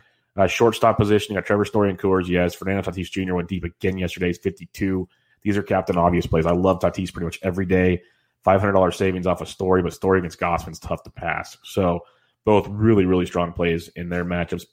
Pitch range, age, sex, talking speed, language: 90-100 Hz, 20-39, male, 215 wpm, English